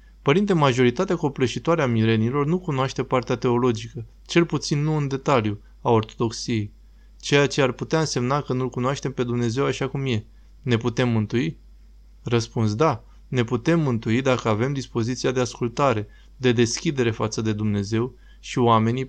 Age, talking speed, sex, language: 20-39, 155 wpm, male, Romanian